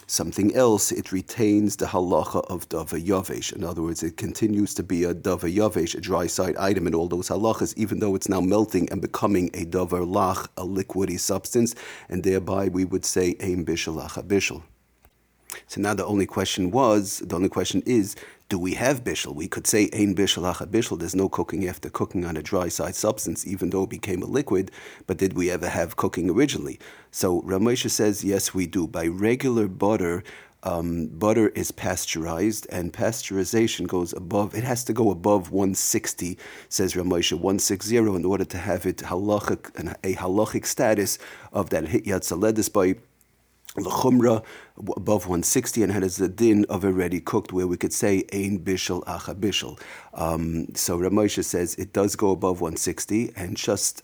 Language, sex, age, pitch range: English, male, 40-59, 90-105 Hz